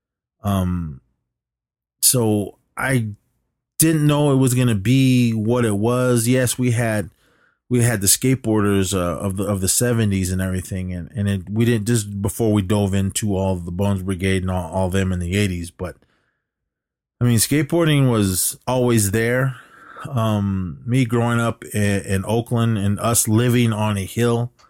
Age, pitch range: 30-49, 100-120 Hz